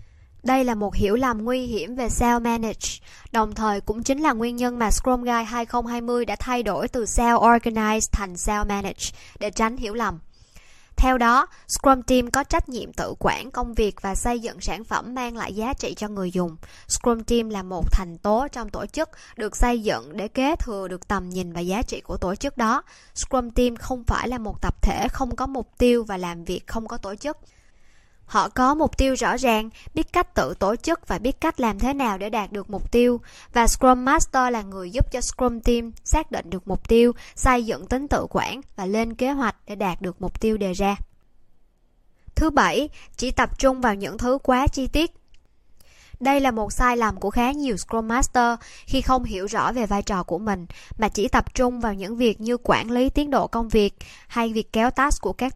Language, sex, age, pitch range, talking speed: Vietnamese, male, 10-29, 205-255 Hz, 215 wpm